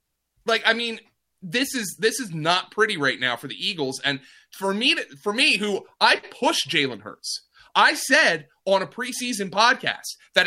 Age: 30-49